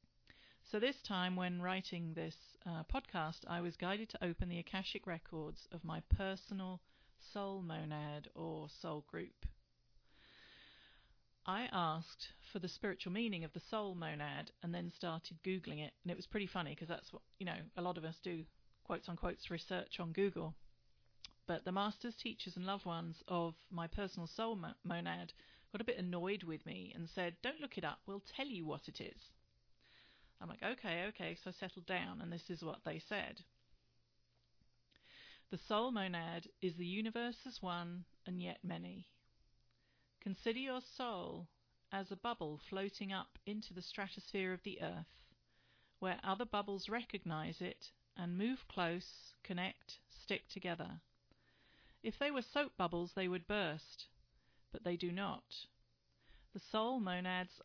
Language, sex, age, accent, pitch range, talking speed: English, female, 40-59, British, 165-200 Hz, 160 wpm